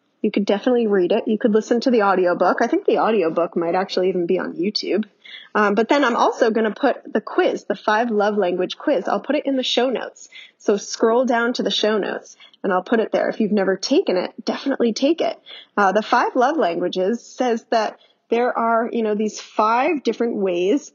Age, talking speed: 10-29, 225 wpm